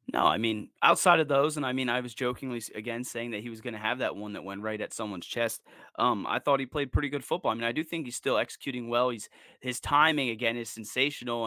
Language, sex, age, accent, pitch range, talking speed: English, male, 20-39, American, 115-130 Hz, 265 wpm